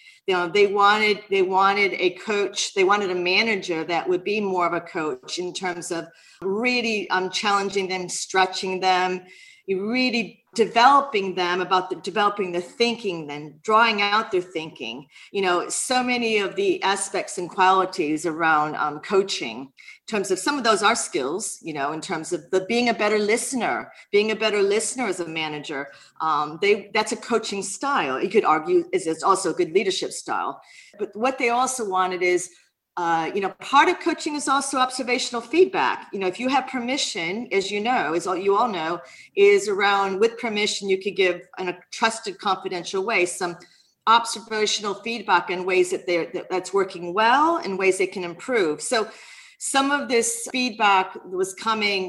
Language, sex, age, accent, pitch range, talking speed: English, female, 40-59, American, 185-240 Hz, 180 wpm